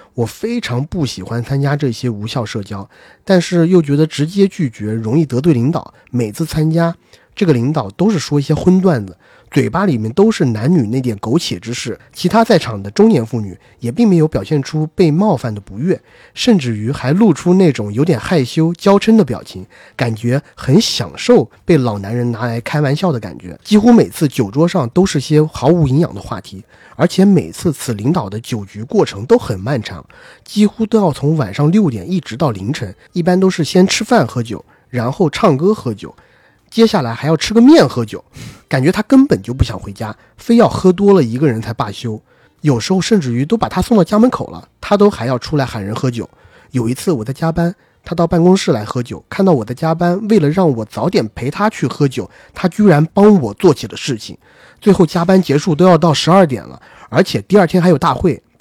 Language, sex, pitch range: Chinese, male, 120-185 Hz